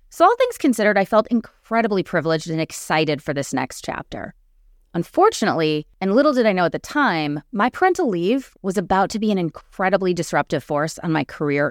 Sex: female